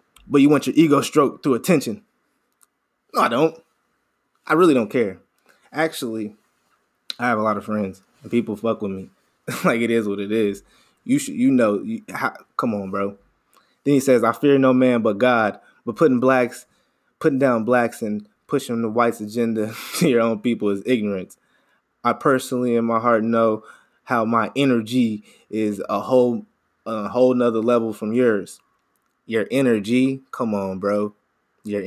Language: English